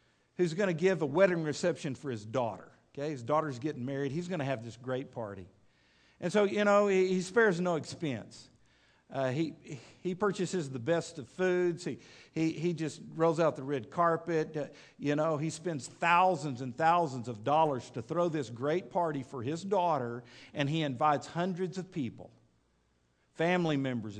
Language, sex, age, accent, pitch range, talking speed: English, male, 50-69, American, 140-205 Hz, 180 wpm